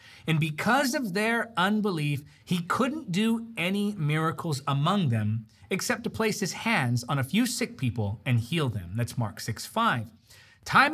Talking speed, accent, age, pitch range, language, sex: 165 wpm, American, 30-49, 130-215 Hz, English, male